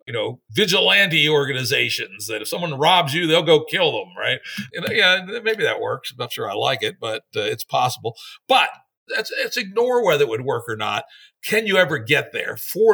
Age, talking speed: 60-79, 220 wpm